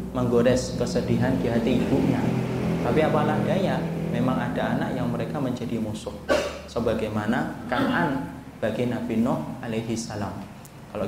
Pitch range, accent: 115-130 Hz, native